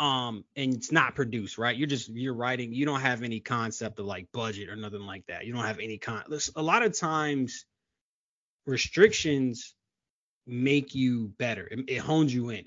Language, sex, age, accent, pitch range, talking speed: English, male, 20-39, American, 115-145 Hz, 190 wpm